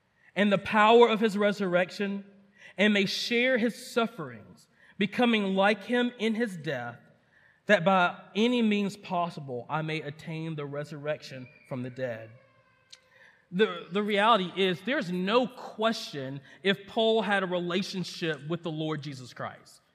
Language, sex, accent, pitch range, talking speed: English, male, American, 185-250 Hz, 140 wpm